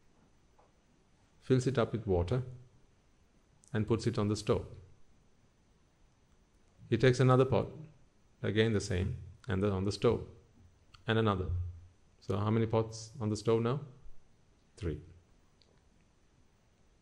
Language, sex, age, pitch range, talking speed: English, male, 50-69, 90-120 Hz, 120 wpm